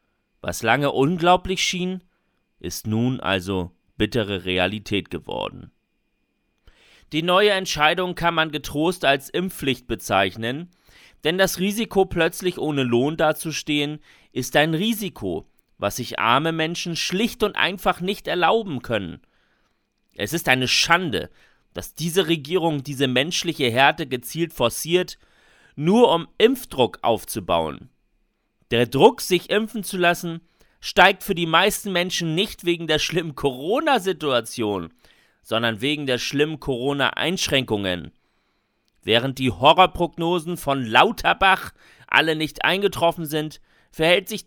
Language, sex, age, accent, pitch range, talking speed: German, male, 40-59, German, 130-190 Hz, 115 wpm